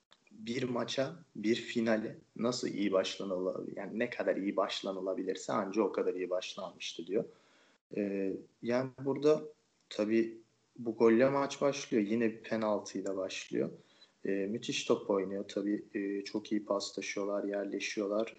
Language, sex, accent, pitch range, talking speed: Turkish, male, native, 100-120 Hz, 135 wpm